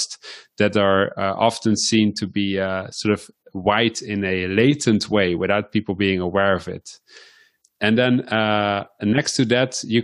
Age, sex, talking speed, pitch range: 30-49, male, 165 wpm, 100-120 Hz